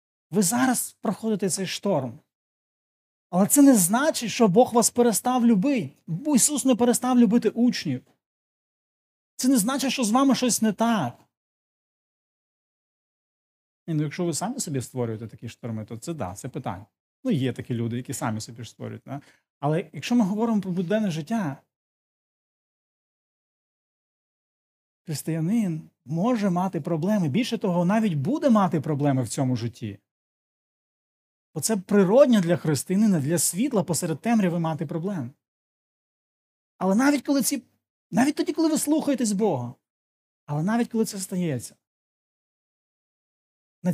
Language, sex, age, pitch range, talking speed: Ukrainian, male, 30-49, 155-225 Hz, 135 wpm